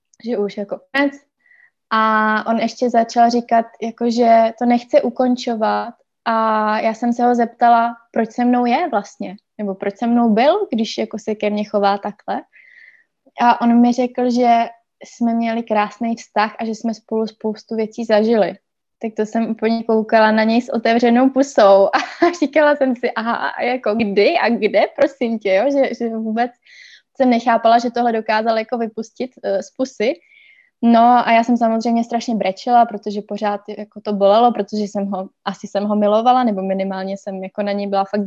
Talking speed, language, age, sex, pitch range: 175 wpm, Slovak, 20-39, female, 210-240 Hz